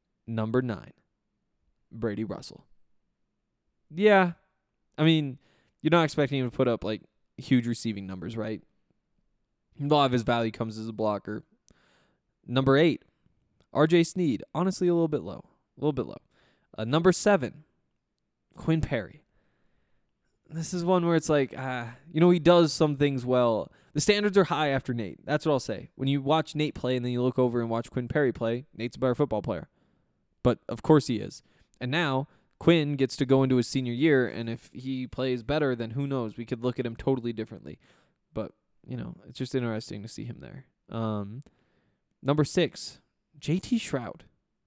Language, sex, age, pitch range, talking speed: English, male, 20-39, 120-155 Hz, 180 wpm